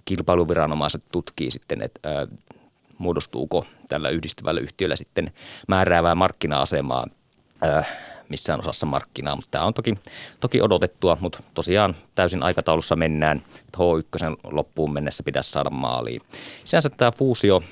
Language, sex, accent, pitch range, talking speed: Finnish, male, native, 85-115 Hz, 125 wpm